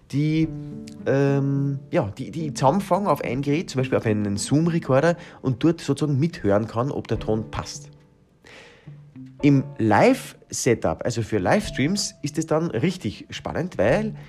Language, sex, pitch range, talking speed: German, male, 115-165 Hz, 145 wpm